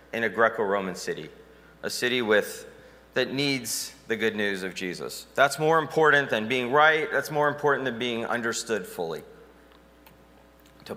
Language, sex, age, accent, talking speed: English, male, 30-49, American, 155 wpm